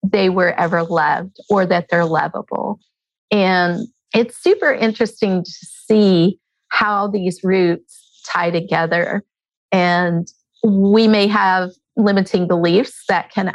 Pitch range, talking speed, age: 180-235 Hz, 120 wpm, 40-59